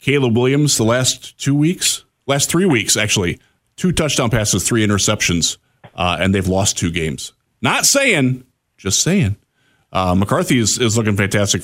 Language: English